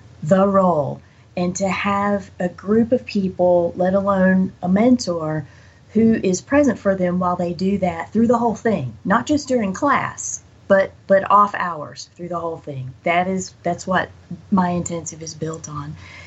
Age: 30-49